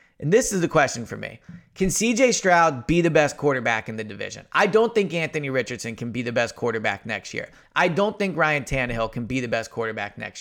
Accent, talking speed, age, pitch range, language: American, 230 wpm, 30-49, 130-175 Hz, English